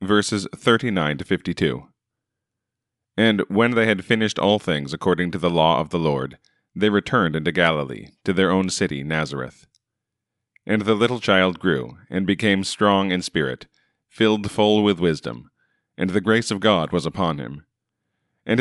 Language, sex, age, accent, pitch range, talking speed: English, male, 40-59, American, 85-105 Hz, 170 wpm